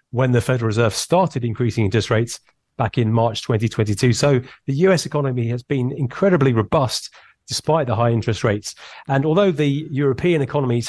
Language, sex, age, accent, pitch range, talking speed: English, male, 40-59, British, 115-135 Hz, 165 wpm